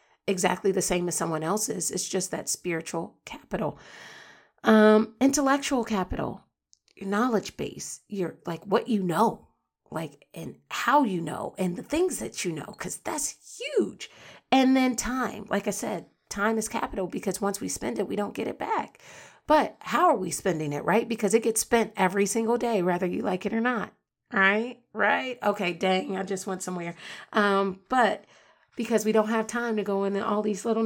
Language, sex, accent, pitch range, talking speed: English, female, American, 185-230 Hz, 185 wpm